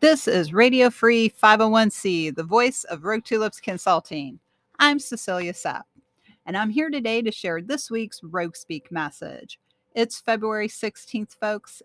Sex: female